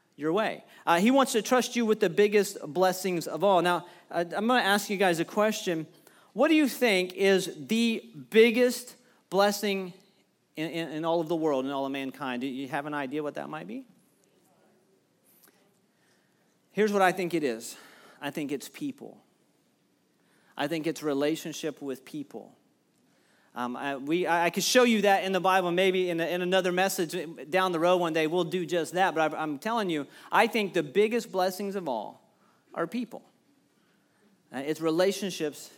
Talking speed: 185 wpm